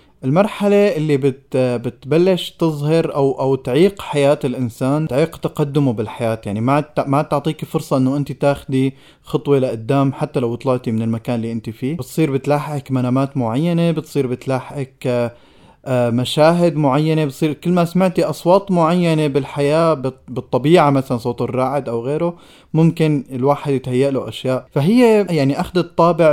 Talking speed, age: 140 wpm, 20-39